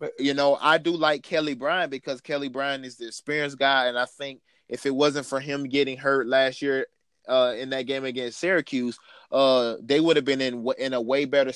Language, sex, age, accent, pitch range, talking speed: English, male, 20-39, American, 125-145 Hz, 220 wpm